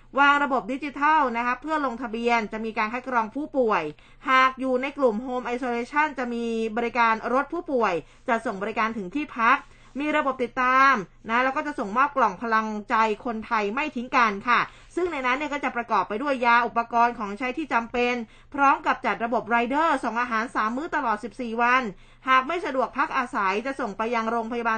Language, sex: Thai, female